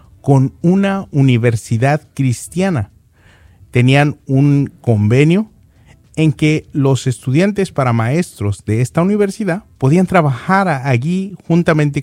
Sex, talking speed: male, 100 wpm